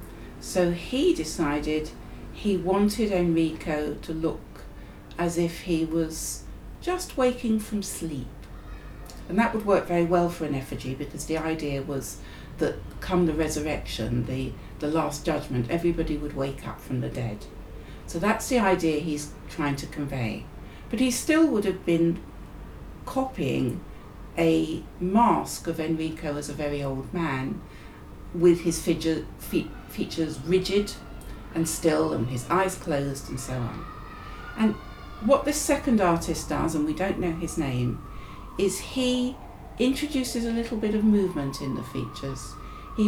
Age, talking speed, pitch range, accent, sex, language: 60-79, 150 wpm, 145-215 Hz, British, female, English